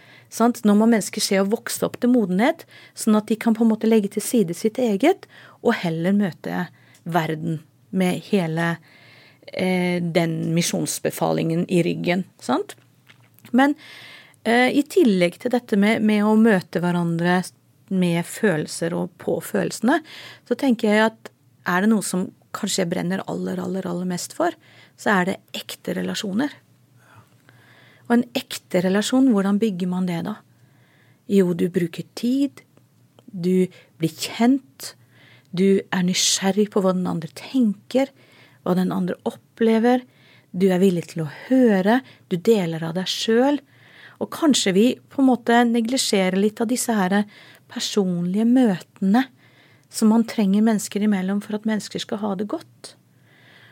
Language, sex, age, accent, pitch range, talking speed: English, female, 40-59, Swedish, 175-230 Hz, 150 wpm